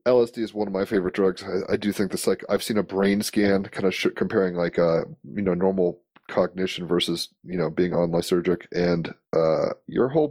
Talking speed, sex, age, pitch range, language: 220 wpm, male, 30-49, 90-115 Hz, English